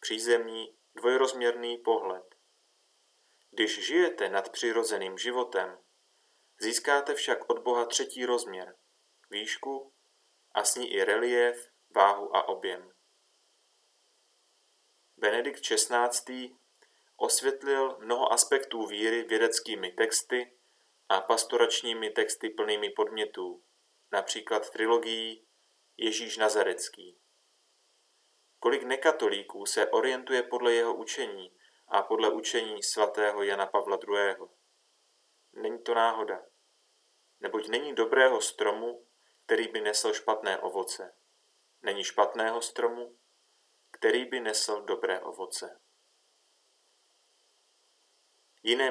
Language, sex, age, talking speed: Slovak, male, 30-49, 90 wpm